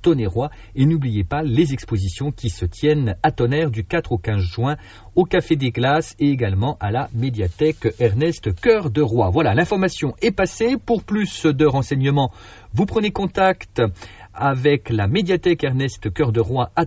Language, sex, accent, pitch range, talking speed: French, male, French, 105-160 Hz, 165 wpm